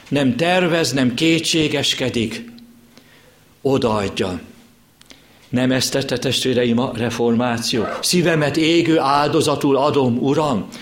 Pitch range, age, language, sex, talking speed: 135-195 Hz, 60-79, Hungarian, male, 85 wpm